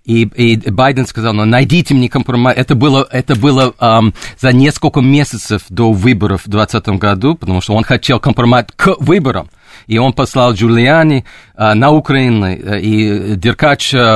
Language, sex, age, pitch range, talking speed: Russian, male, 40-59, 110-140 Hz, 150 wpm